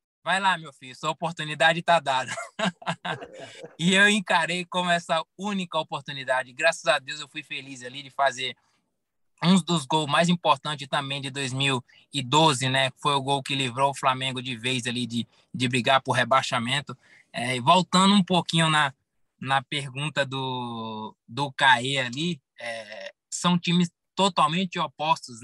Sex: male